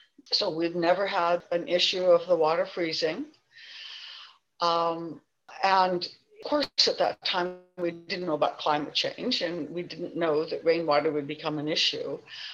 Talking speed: 160 wpm